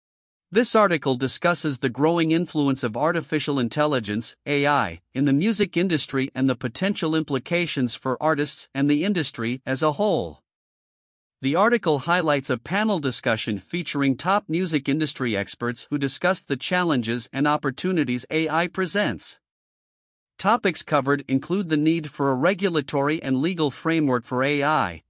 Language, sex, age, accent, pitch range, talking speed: English, male, 50-69, American, 135-170 Hz, 140 wpm